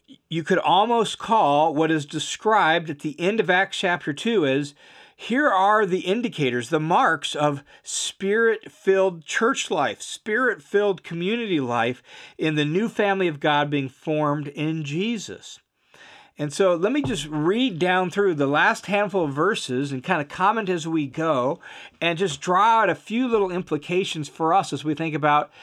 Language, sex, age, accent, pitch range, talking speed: English, male, 50-69, American, 145-195 Hz, 170 wpm